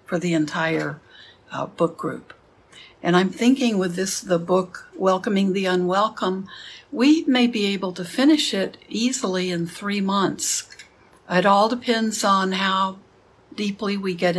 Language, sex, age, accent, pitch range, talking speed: English, female, 60-79, American, 175-205 Hz, 145 wpm